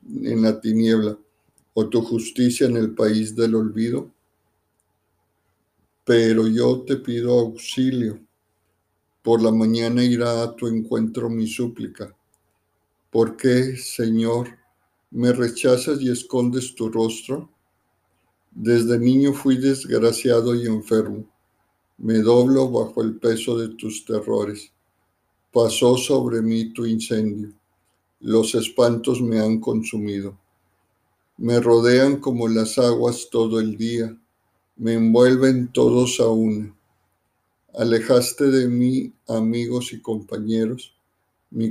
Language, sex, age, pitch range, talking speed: Spanish, male, 50-69, 105-120 Hz, 110 wpm